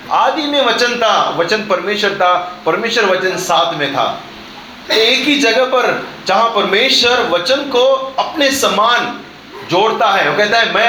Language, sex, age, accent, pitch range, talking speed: Hindi, male, 30-49, native, 185-255 Hz, 155 wpm